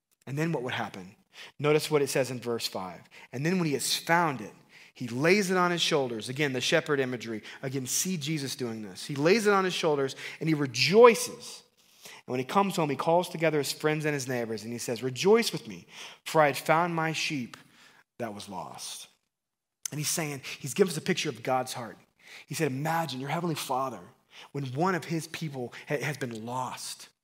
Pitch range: 130-175 Hz